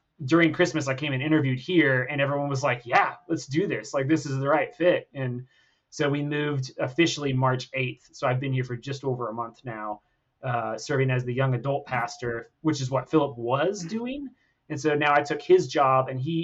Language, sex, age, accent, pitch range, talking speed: English, male, 30-49, American, 125-150 Hz, 220 wpm